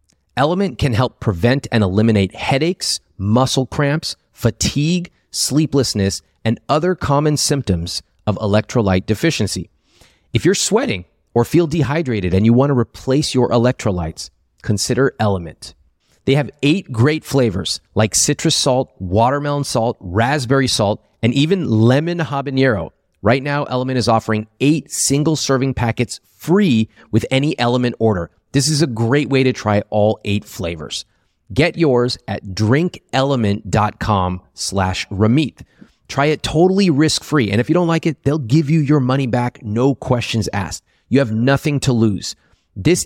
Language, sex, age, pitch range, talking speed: English, male, 30-49, 100-140 Hz, 145 wpm